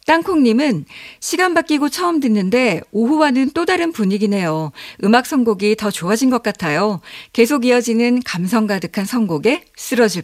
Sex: female